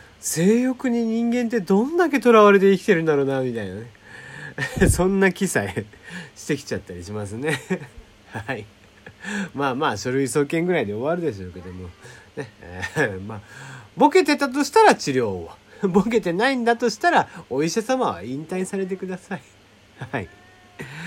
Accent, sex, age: native, male, 40-59